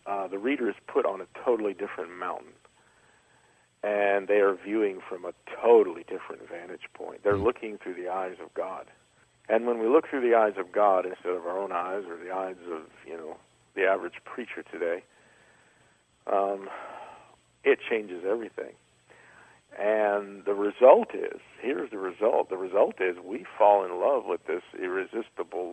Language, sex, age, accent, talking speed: English, male, 50-69, American, 170 wpm